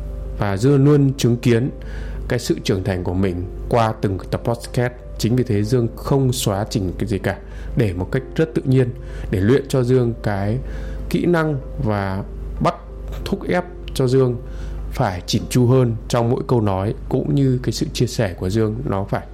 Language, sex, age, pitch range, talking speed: Vietnamese, male, 20-39, 100-130 Hz, 190 wpm